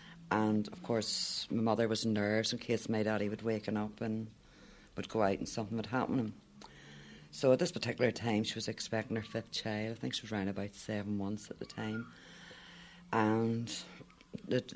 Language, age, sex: English, 60-79, female